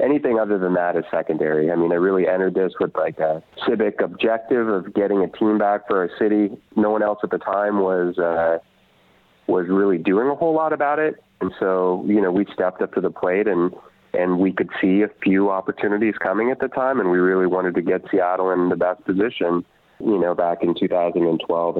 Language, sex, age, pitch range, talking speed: English, male, 30-49, 85-105 Hz, 215 wpm